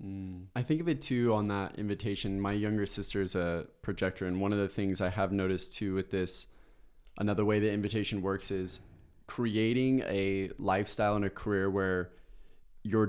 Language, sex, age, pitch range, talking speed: English, male, 20-39, 100-115 Hz, 180 wpm